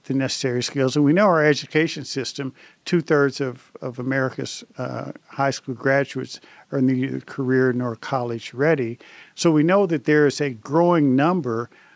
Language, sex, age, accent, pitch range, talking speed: English, male, 50-69, American, 130-155 Hz, 160 wpm